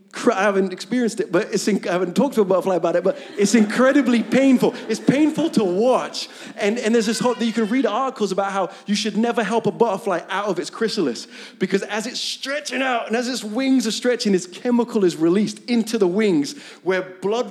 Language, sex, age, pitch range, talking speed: English, male, 30-49, 190-235 Hz, 220 wpm